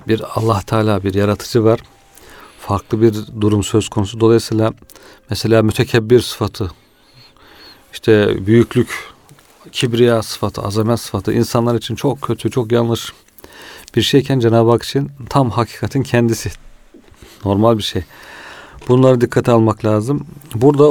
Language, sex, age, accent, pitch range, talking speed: Turkish, male, 40-59, native, 110-125 Hz, 125 wpm